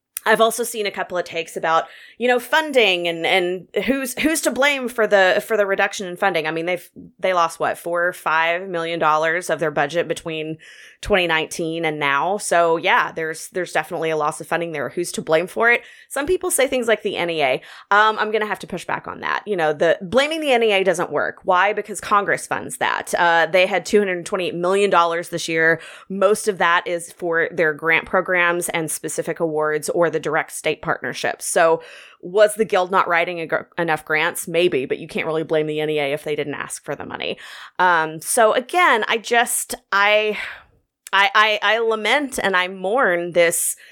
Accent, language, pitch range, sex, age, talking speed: American, English, 160-210 Hz, female, 20-39, 200 wpm